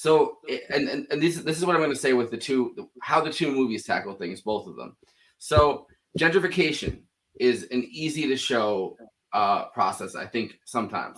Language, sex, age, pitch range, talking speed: English, male, 20-39, 120-160 Hz, 185 wpm